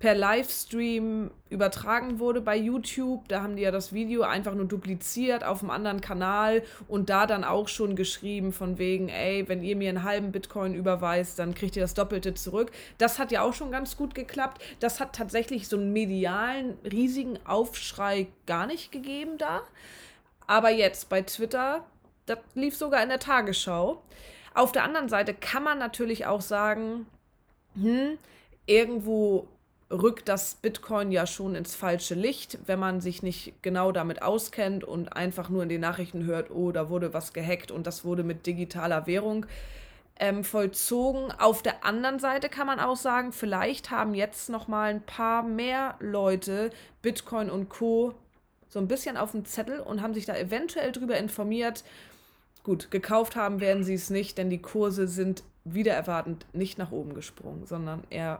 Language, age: German, 20-39